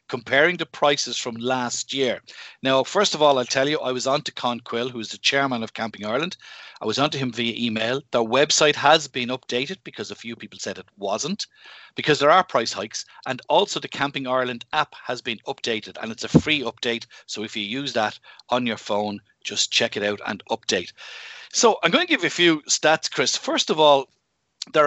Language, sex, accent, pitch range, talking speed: English, male, Irish, 120-150 Hz, 220 wpm